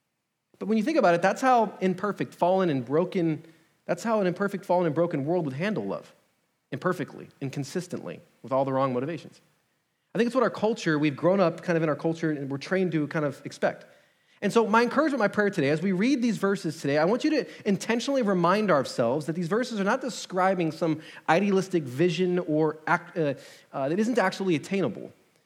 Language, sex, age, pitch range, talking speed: English, male, 30-49, 155-205 Hz, 205 wpm